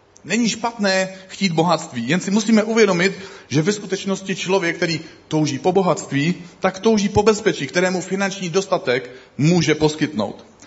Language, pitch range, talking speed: Czech, 135-195 Hz, 140 wpm